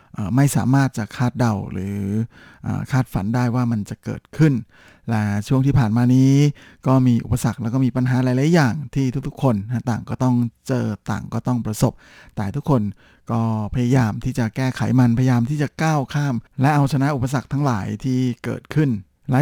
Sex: male